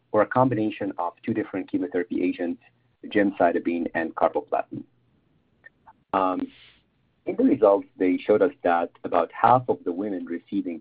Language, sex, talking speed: English, male, 140 wpm